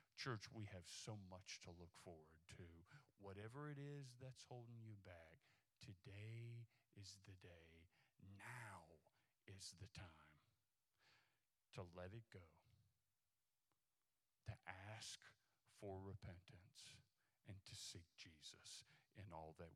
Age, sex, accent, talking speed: 50-69, male, American, 120 wpm